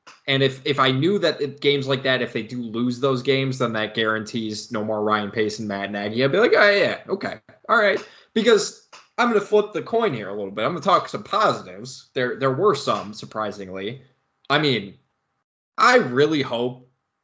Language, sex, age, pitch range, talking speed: English, male, 20-39, 120-180 Hz, 210 wpm